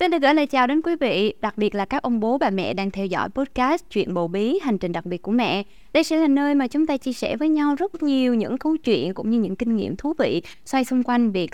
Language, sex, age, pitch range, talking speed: Vietnamese, female, 20-39, 200-275 Hz, 290 wpm